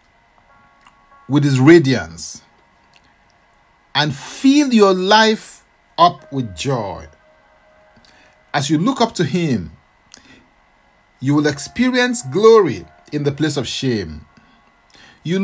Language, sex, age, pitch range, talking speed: English, male, 50-69, 120-185 Hz, 100 wpm